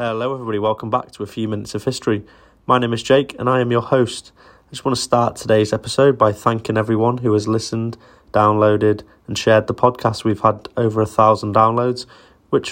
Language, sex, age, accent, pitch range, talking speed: English, male, 20-39, British, 105-120 Hz, 210 wpm